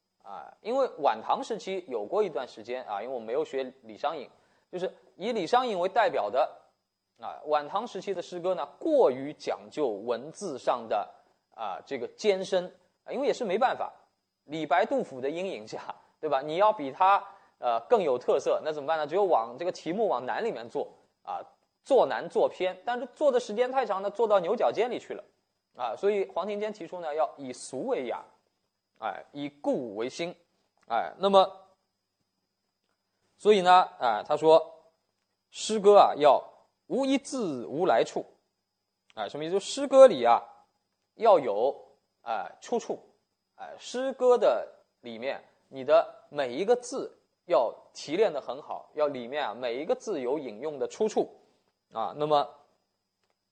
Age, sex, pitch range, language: 20-39, male, 150-240 Hz, Chinese